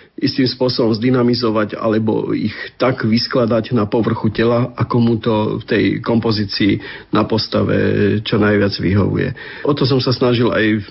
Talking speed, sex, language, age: 155 wpm, male, Slovak, 40-59